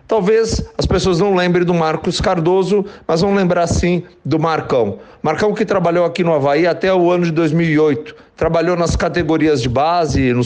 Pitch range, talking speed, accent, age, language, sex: 165-205 Hz, 180 wpm, Brazilian, 50-69, Portuguese, male